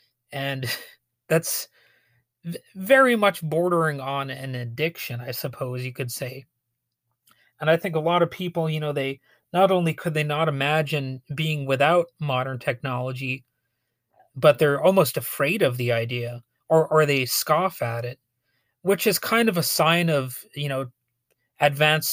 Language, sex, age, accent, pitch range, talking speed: English, male, 30-49, American, 125-160 Hz, 150 wpm